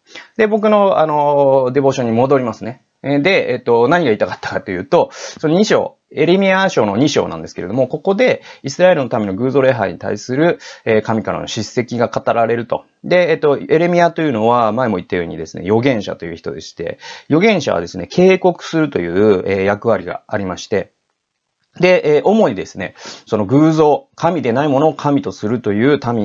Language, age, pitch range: Japanese, 30-49, 105-155 Hz